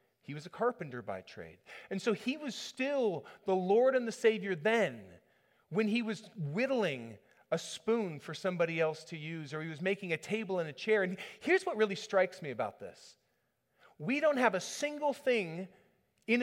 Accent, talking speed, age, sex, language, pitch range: American, 190 wpm, 30-49, male, English, 155-215 Hz